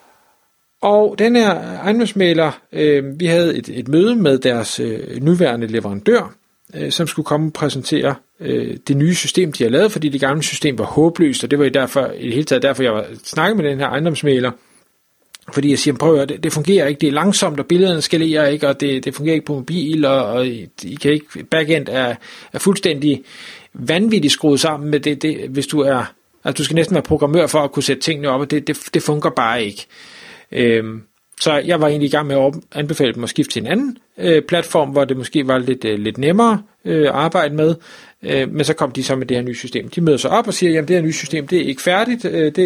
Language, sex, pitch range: Danish, male, 135-170 Hz